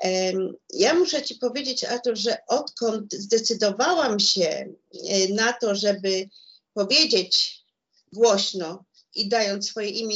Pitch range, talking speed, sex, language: 195-255 Hz, 105 wpm, female, Polish